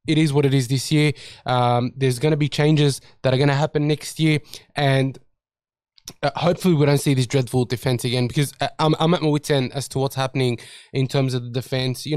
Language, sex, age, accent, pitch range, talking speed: English, male, 20-39, Australian, 135-165 Hz, 225 wpm